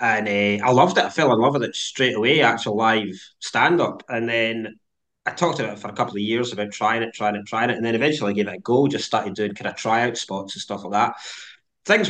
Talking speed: 280 wpm